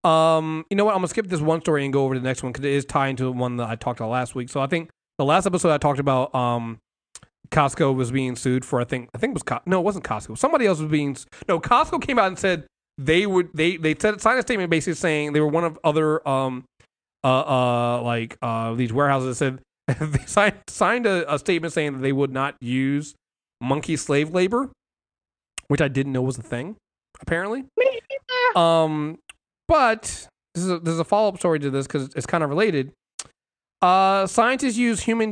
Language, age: English, 30-49